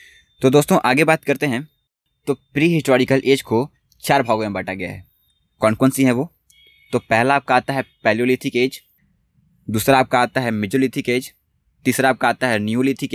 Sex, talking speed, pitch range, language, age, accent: male, 185 wpm, 110-135 Hz, Hindi, 20-39, native